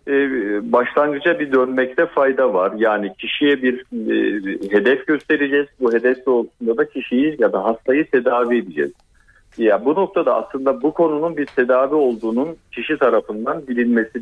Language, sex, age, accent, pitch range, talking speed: Turkish, male, 50-69, native, 110-155 Hz, 140 wpm